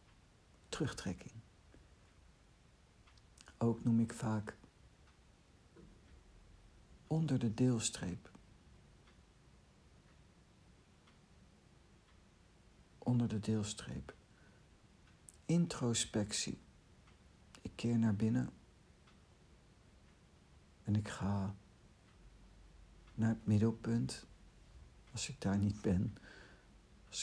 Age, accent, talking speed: 60-79, Dutch, 60 wpm